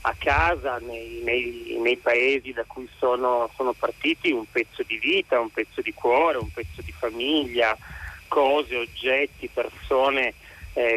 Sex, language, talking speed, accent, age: male, Italian, 150 wpm, native, 40-59